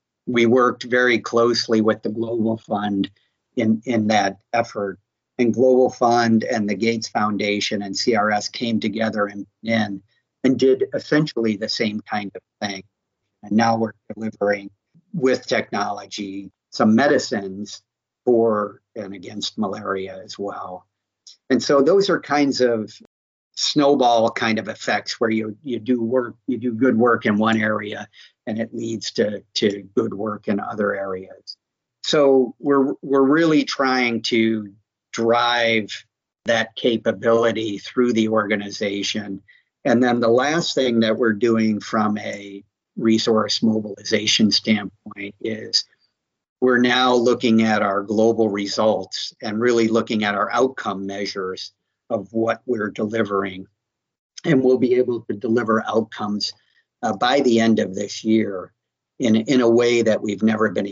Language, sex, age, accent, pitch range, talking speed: English, male, 50-69, American, 105-120 Hz, 140 wpm